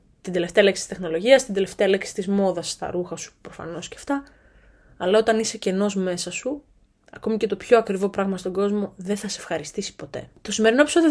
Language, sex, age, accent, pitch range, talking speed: Greek, female, 20-39, native, 185-225 Hz, 205 wpm